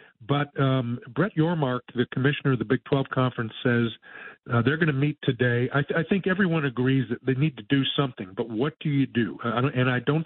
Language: English